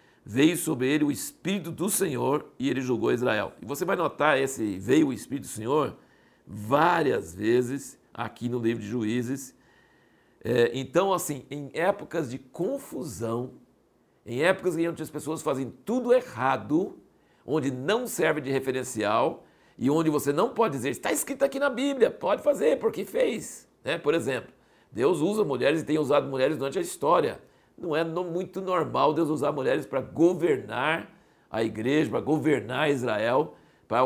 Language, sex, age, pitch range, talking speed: Portuguese, male, 60-79, 130-170 Hz, 160 wpm